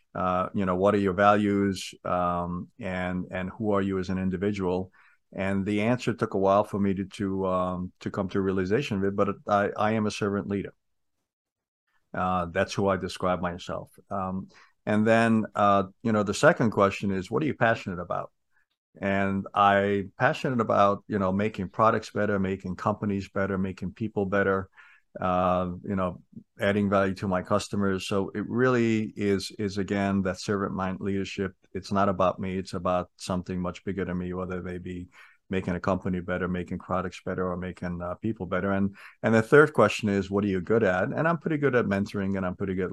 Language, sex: English, male